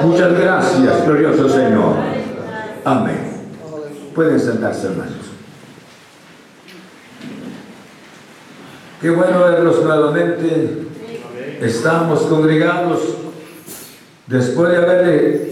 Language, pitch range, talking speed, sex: Spanish, 155-195 Hz, 65 wpm, male